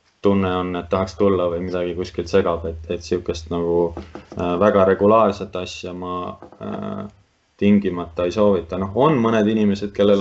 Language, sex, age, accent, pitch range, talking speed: English, male, 20-39, Finnish, 90-100 Hz, 145 wpm